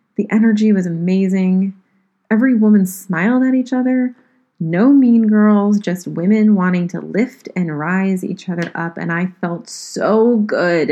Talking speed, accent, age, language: 155 wpm, American, 30-49, English